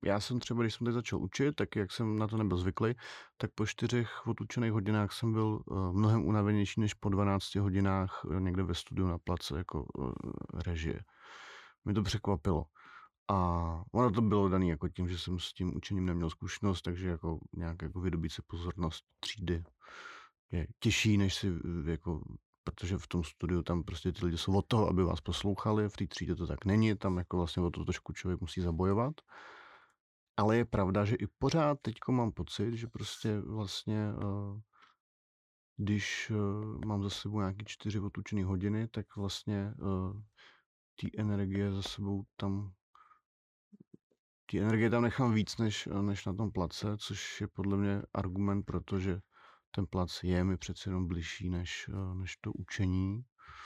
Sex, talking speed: male, 165 wpm